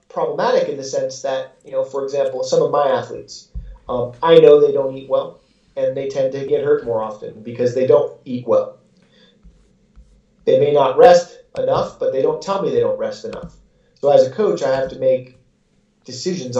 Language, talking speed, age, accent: English, 205 wpm, 30-49, American